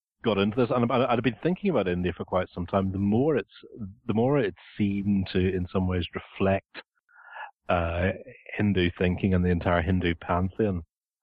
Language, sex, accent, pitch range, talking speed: English, male, British, 85-100 Hz, 180 wpm